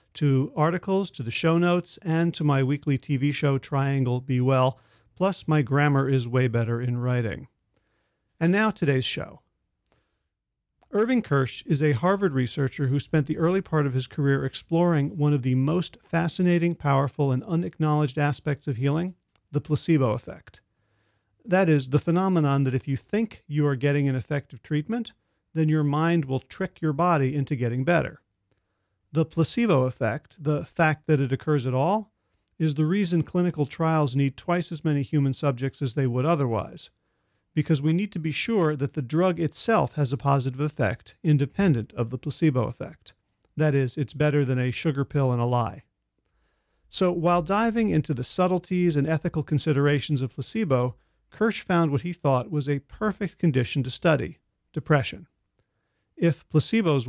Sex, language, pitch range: male, English, 130-165 Hz